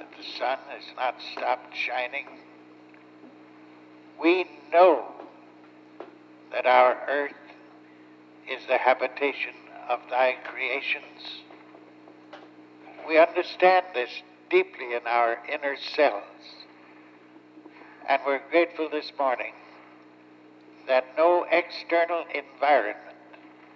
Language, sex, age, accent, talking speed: English, male, 60-79, American, 90 wpm